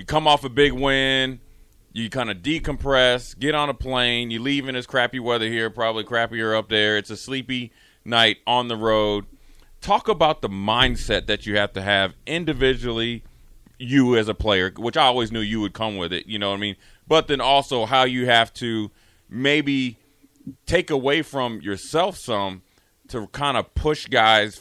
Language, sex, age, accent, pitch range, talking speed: English, male, 30-49, American, 105-130 Hz, 190 wpm